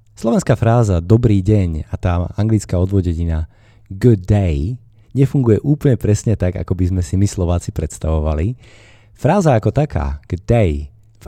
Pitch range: 85-110 Hz